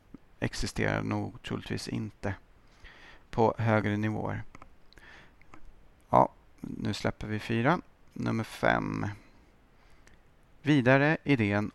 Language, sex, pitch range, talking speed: Swedish, male, 100-125 Hz, 80 wpm